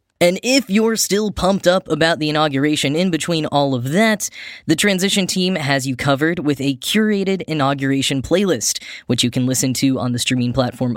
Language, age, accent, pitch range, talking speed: English, 10-29, American, 130-165 Hz, 185 wpm